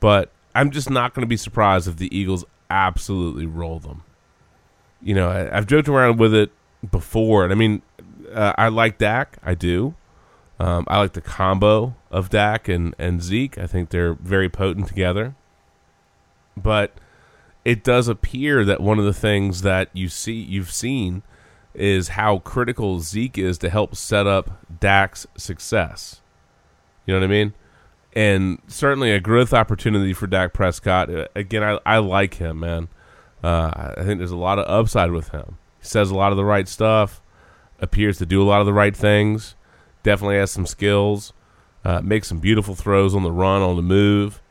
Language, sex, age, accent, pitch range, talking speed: English, male, 30-49, American, 90-110 Hz, 175 wpm